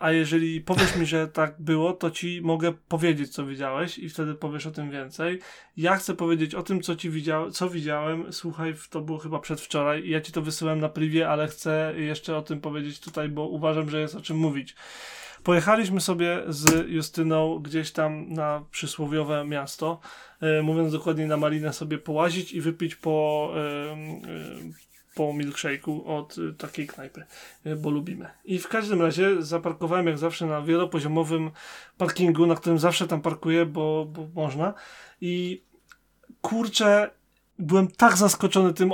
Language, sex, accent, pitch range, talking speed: Polish, male, native, 155-180 Hz, 165 wpm